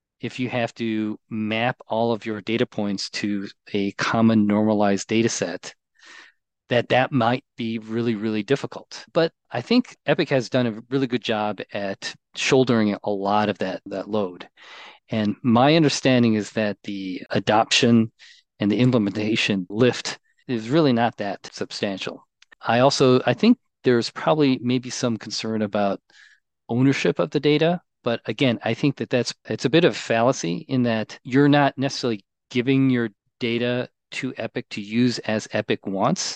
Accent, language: American, English